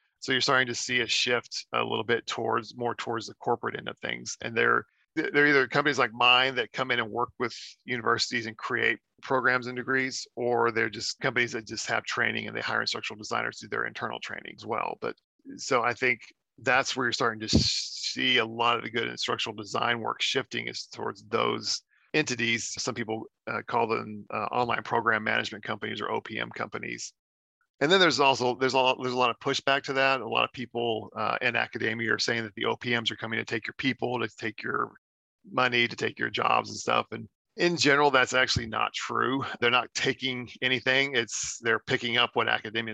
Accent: American